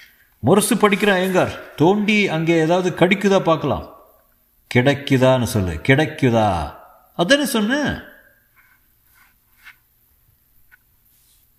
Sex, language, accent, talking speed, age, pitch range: male, Tamil, native, 65 wpm, 60-79, 115-180 Hz